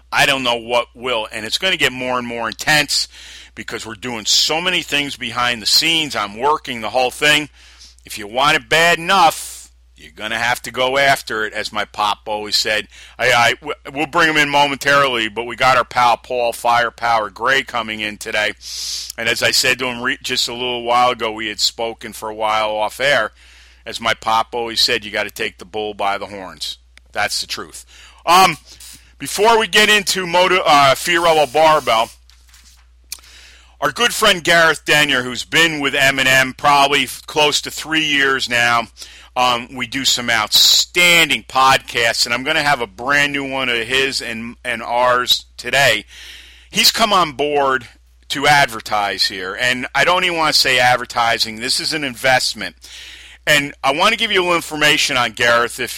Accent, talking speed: American, 190 wpm